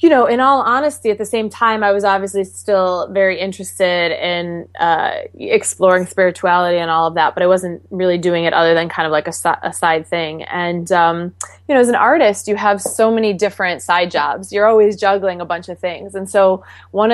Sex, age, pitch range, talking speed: female, 20-39, 170-200 Hz, 215 wpm